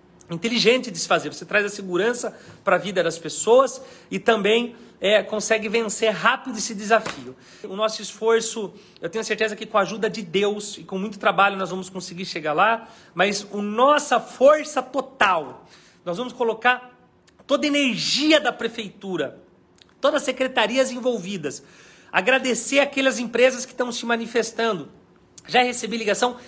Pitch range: 210-250 Hz